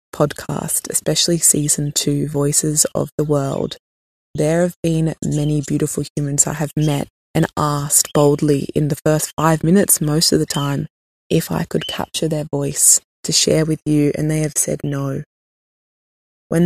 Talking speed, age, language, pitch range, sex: 160 wpm, 20-39, English, 145-170 Hz, female